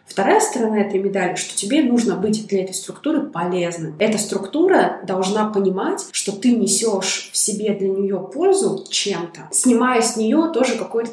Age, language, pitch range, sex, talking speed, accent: 20-39, Russian, 190-225 Hz, female, 160 wpm, native